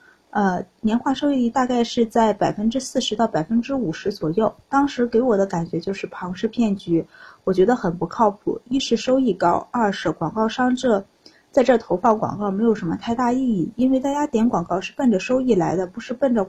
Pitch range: 195-260 Hz